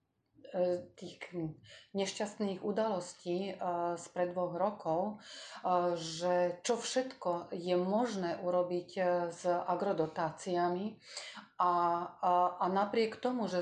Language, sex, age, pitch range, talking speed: Slovak, female, 40-59, 175-210 Hz, 90 wpm